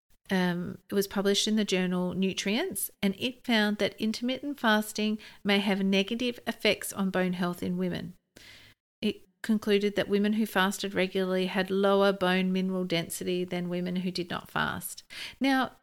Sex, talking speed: female, 160 wpm